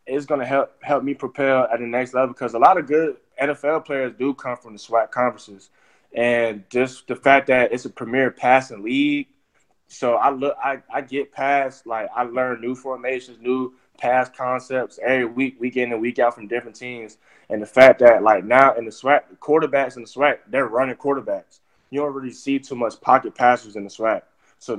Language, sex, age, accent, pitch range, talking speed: English, male, 20-39, American, 115-135 Hz, 210 wpm